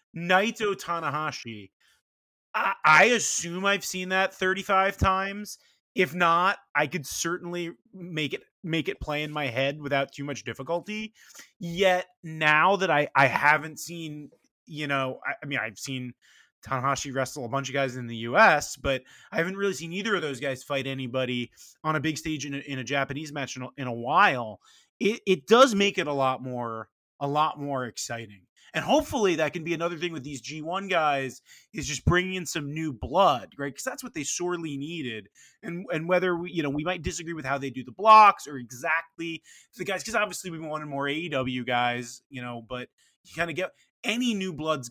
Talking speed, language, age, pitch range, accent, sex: 200 wpm, English, 30-49, 135-175 Hz, American, male